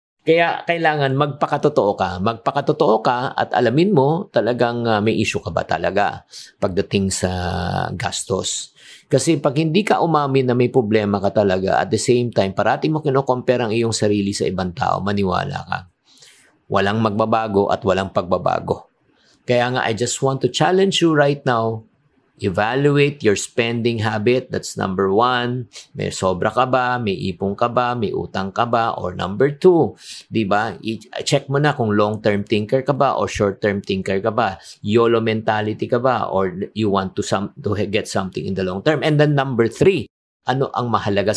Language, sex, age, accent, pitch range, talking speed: English, male, 50-69, Filipino, 100-130 Hz, 170 wpm